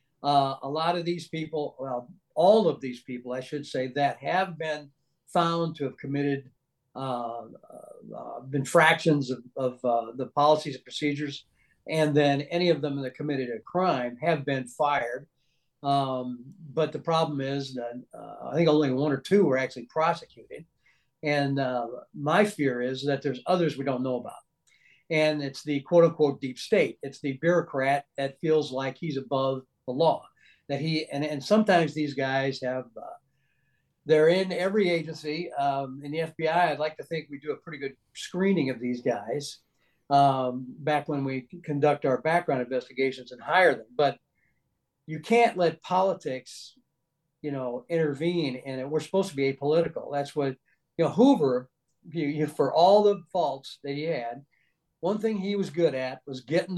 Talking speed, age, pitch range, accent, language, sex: 170 wpm, 60-79, 135-160 Hz, American, English, male